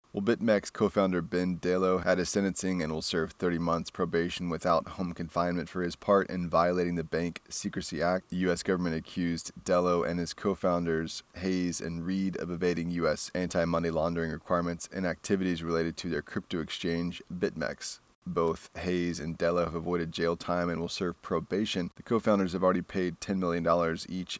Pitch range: 85-90 Hz